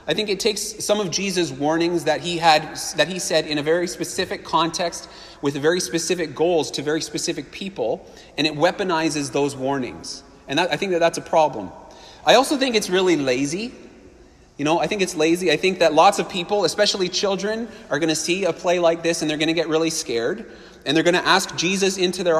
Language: English